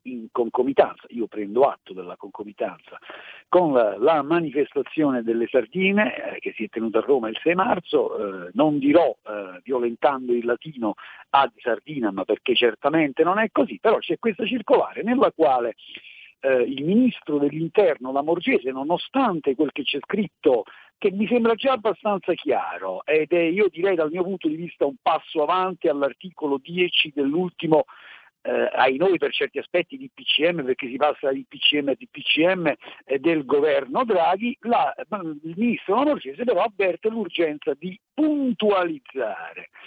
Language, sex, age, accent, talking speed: Italian, male, 50-69, native, 155 wpm